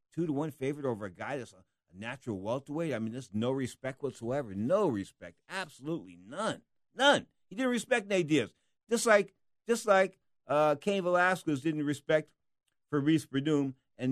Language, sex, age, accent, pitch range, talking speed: English, male, 50-69, American, 115-155 Hz, 155 wpm